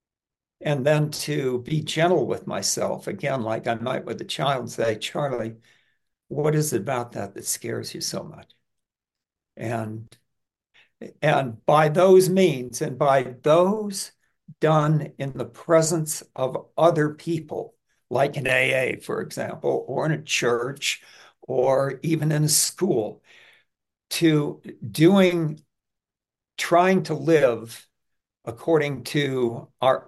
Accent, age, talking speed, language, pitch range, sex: American, 60-79, 130 wpm, English, 130-170 Hz, male